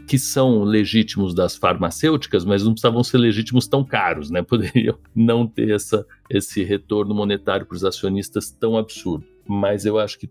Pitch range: 100-110 Hz